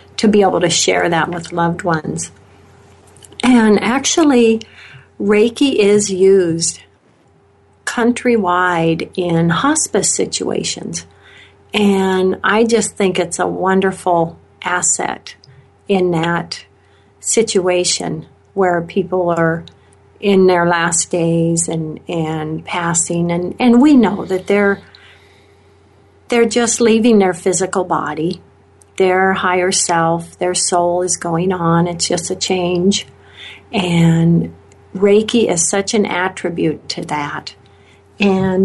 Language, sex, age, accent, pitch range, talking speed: English, female, 50-69, American, 165-195 Hz, 110 wpm